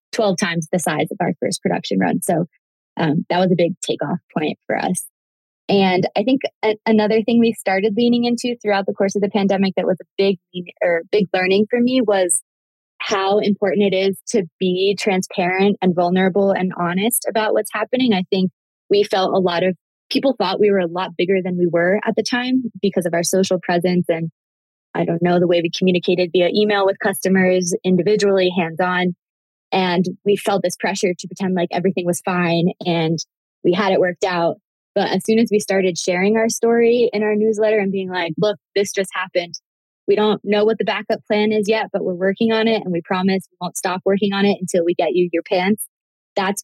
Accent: American